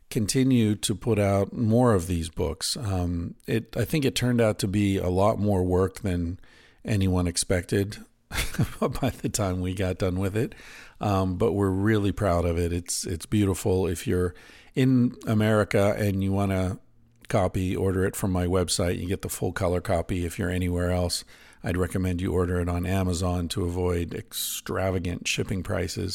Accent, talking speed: American, 180 wpm